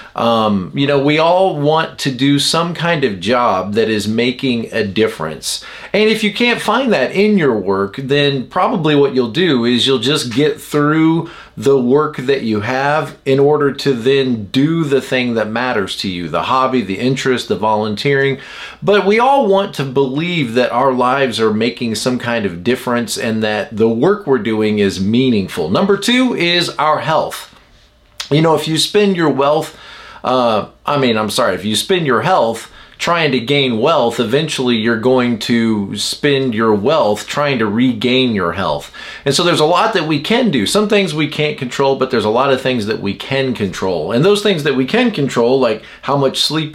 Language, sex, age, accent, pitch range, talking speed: English, male, 40-59, American, 120-160 Hz, 200 wpm